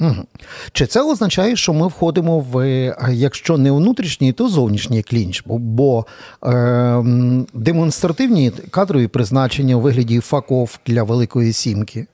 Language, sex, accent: Ukrainian, male, native